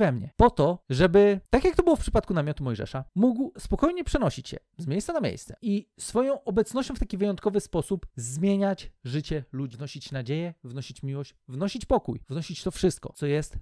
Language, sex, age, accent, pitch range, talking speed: Polish, male, 40-59, native, 140-230 Hz, 185 wpm